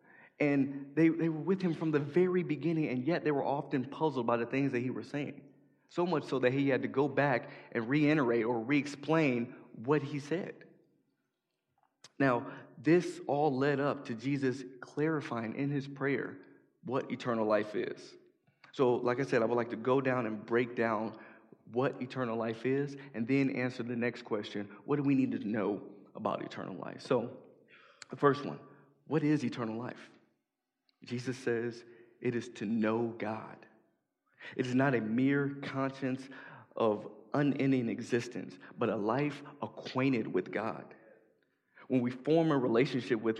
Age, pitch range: 20-39, 120-145 Hz